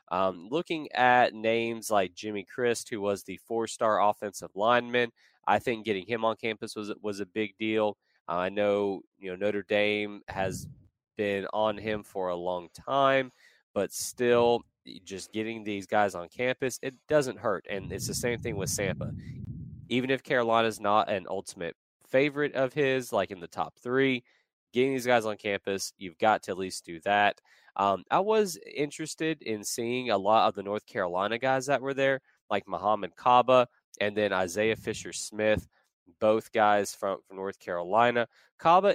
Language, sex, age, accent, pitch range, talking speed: English, male, 20-39, American, 105-130 Hz, 175 wpm